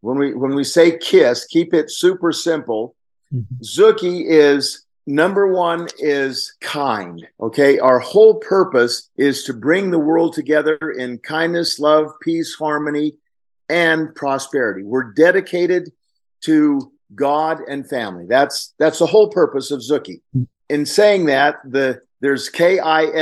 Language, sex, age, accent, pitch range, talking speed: English, male, 50-69, American, 140-180 Hz, 135 wpm